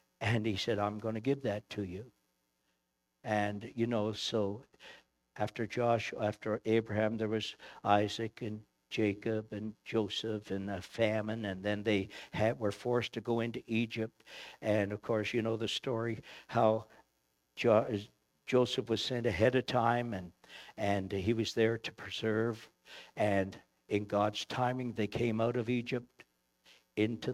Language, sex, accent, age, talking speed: English, male, American, 60-79, 150 wpm